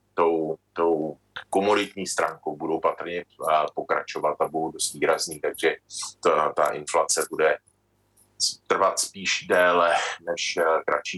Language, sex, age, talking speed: Czech, male, 30-49, 115 wpm